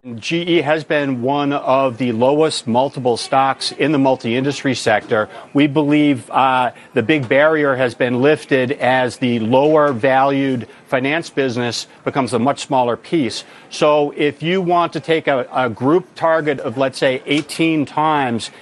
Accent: American